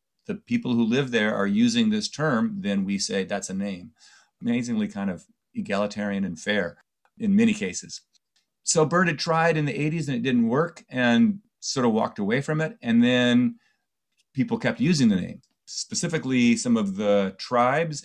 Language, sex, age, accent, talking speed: English, male, 30-49, American, 180 wpm